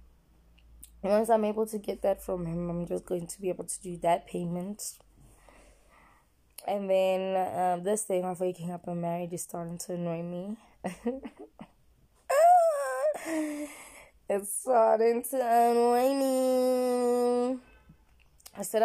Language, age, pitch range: English, 20-39, 170-210 Hz